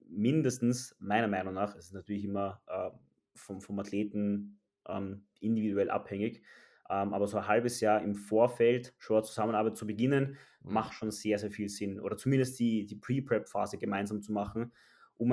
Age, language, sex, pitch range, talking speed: 20-39, German, male, 100-115 Hz, 165 wpm